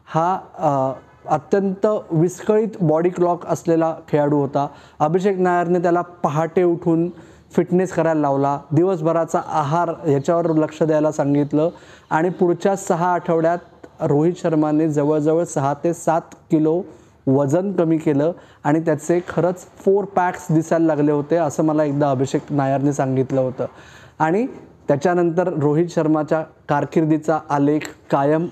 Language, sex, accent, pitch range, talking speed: Marathi, male, native, 150-180 Hz, 120 wpm